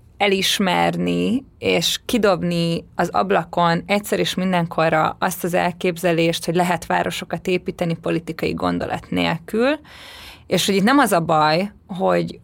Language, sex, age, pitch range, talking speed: Hungarian, female, 20-39, 170-195 Hz, 125 wpm